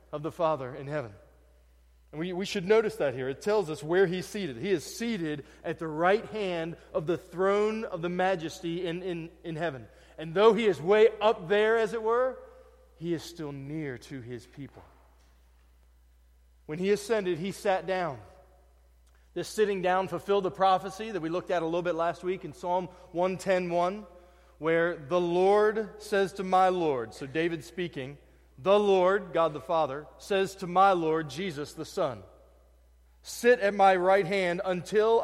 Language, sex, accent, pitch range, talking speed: English, male, American, 155-200 Hz, 180 wpm